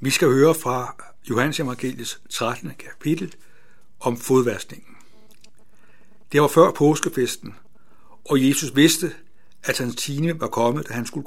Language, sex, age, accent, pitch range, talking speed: Danish, male, 60-79, native, 120-145 Hz, 135 wpm